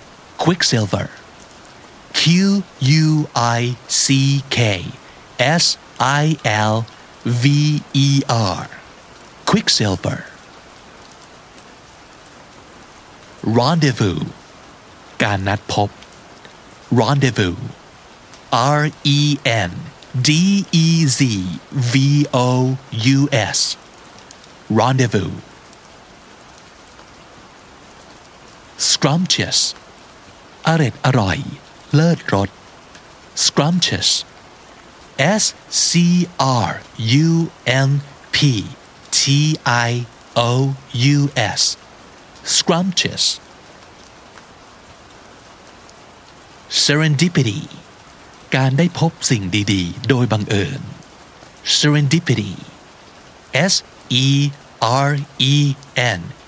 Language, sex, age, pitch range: Thai, male, 50-69, 115-150 Hz